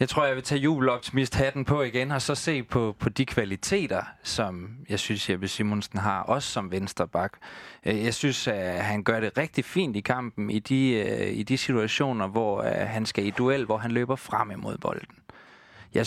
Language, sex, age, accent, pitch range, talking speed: Danish, male, 20-39, native, 105-125 Hz, 195 wpm